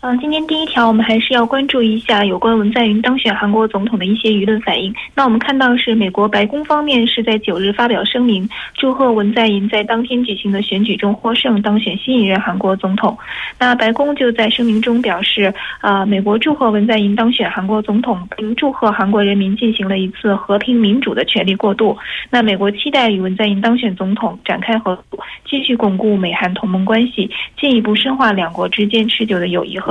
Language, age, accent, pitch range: Korean, 20-39, Chinese, 200-240 Hz